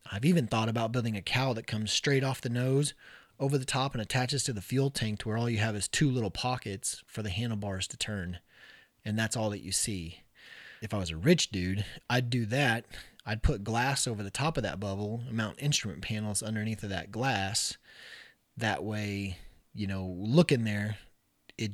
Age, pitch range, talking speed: 30-49, 100-125 Hz, 205 wpm